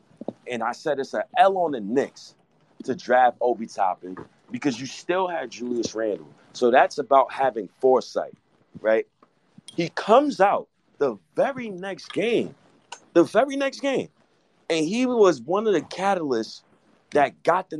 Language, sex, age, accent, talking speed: English, male, 30-49, American, 155 wpm